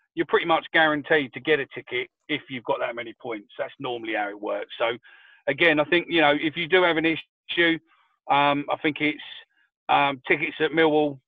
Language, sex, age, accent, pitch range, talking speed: English, male, 40-59, British, 130-155 Hz, 205 wpm